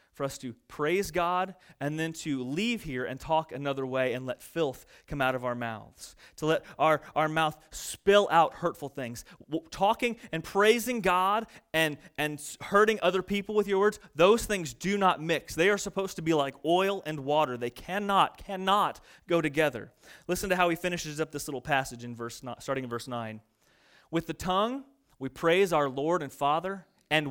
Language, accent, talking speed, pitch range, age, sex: English, American, 195 wpm, 140-195 Hz, 30-49, male